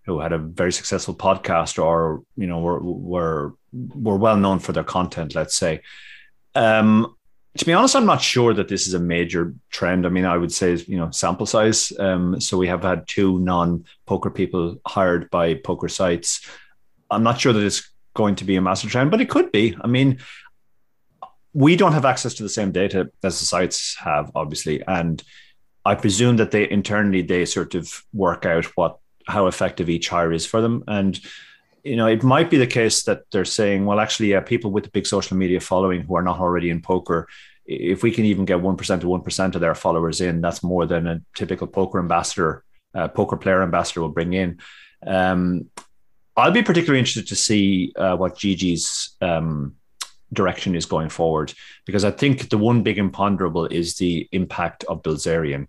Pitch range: 85-105 Hz